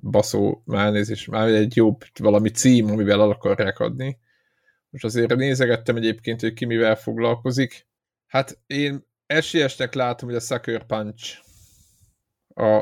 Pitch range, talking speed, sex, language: 110-140 Hz, 135 wpm, male, Hungarian